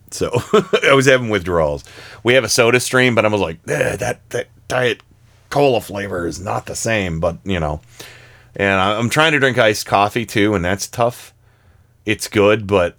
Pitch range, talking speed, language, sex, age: 100-125 Hz, 185 wpm, English, male, 40-59